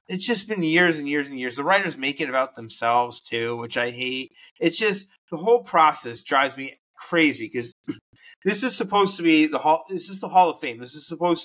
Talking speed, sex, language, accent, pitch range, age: 225 wpm, male, English, American, 135-180 Hz, 20-39